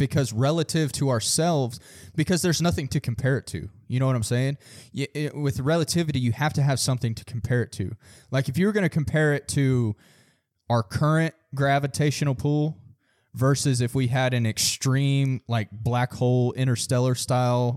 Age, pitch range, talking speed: 20-39, 115-140 Hz, 170 wpm